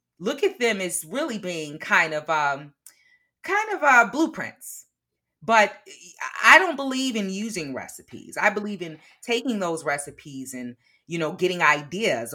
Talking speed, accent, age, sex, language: 150 wpm, American, 30-49, female, English